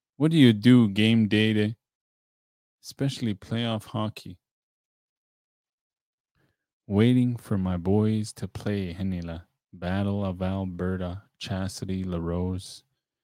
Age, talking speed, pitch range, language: 20-39, 105 wpm, 95-115 Hz, English